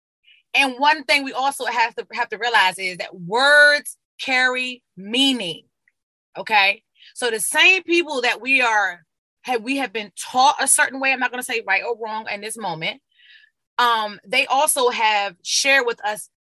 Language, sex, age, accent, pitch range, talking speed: English, female, 20-39, American, 220-310 Hz, 180 wpm